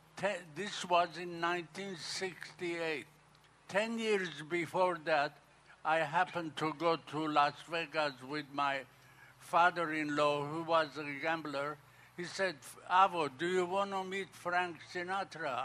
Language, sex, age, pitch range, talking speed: English, male, 60-79, 155-180 Hz, 125 wpm